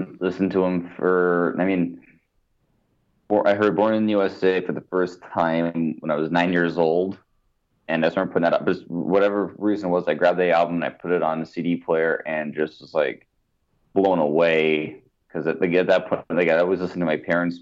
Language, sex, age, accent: English, male, 20-39, American